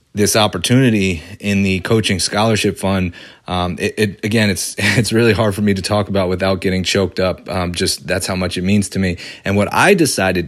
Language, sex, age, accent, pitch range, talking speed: English, male, 30-49, American, 95-115 Hz, 200 wpm